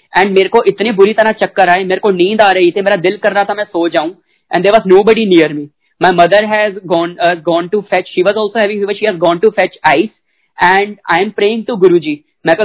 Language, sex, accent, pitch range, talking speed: Hindi, male, native, 175-210 Hz, 90 wpm